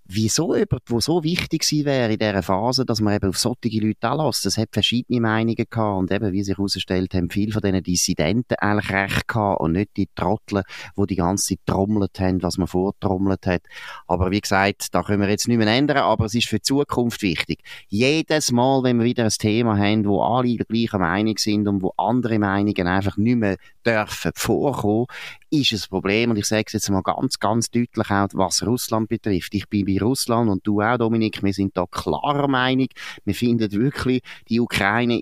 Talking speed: 210 wpm